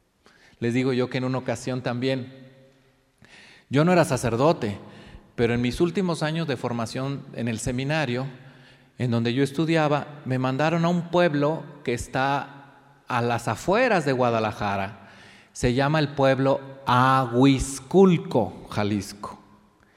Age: 40-59